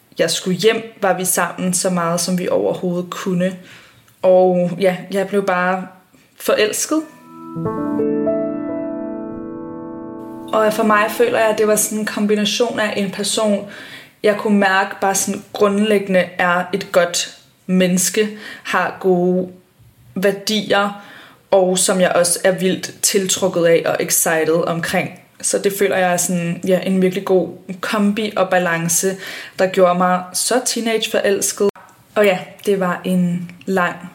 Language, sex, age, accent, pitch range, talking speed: Danish, female, 20-39, native, 180-200 Hz, 140 wpm